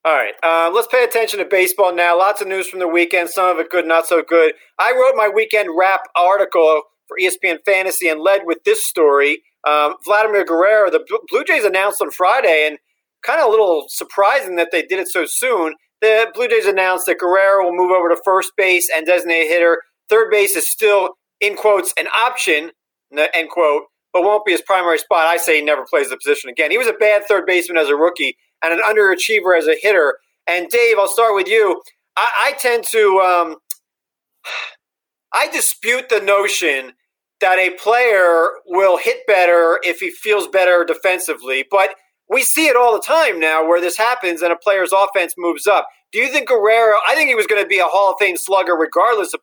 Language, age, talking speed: English, 40-59, 210 wpm